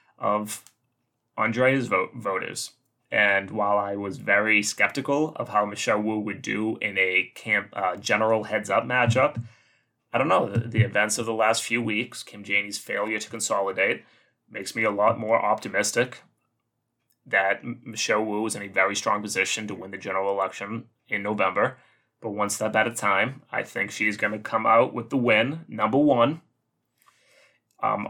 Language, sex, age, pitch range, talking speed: English, male, 20-39, 105-120 Hz, 175 wpm